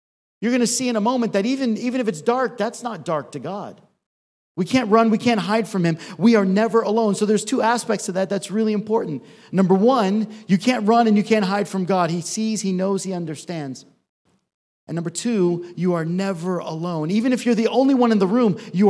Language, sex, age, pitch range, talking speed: English, male, 40-59, 165-215 Hz, 230 wpm